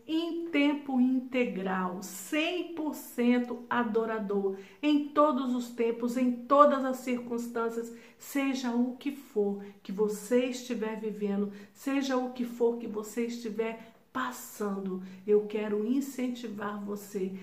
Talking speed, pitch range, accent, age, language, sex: 115 wpm, 225-280 Hz, Brazilian, 50-69, Portuguese, female